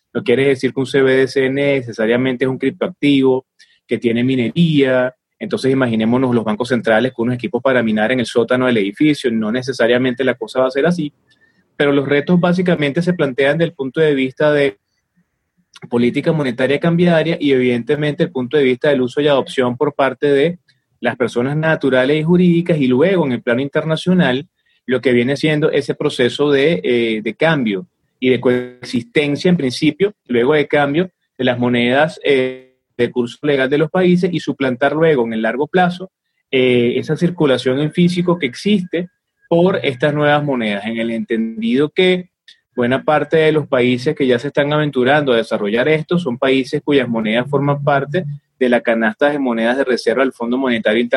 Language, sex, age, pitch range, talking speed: Spanish, male, 30-49, 125-155 Hz, 180 wpm